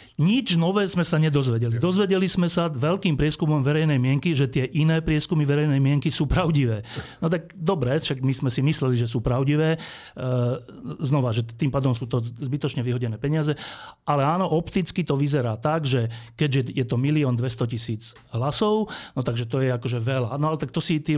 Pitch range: 125-155 Hz